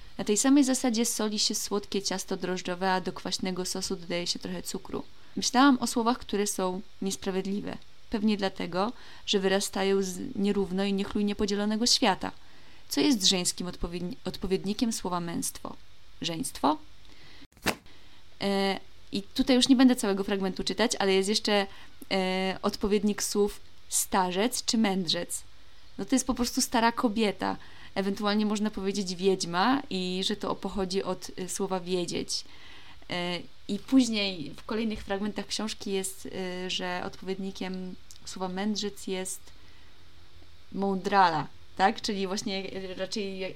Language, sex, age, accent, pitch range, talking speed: Polish, female, 20-39, native, 185-215 Hz, 125 wpm